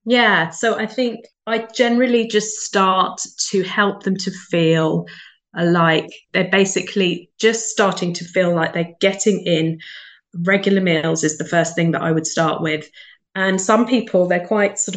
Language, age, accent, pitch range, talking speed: English, 20-39, British, 175-205 Hz, 165 wpm